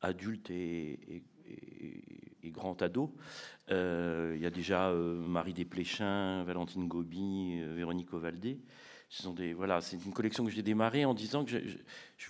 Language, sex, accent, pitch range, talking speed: French, male, French, 95-110 Hz, 155 wpm